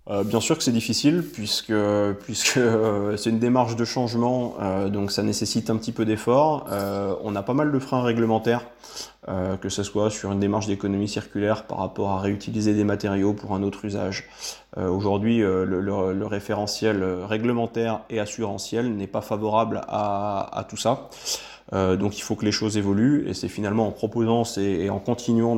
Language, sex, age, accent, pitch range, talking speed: English, male, 20-39, French, 100-115 Hz, 195 wpm